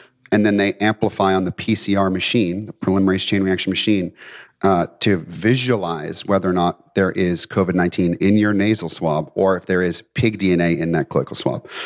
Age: 30-49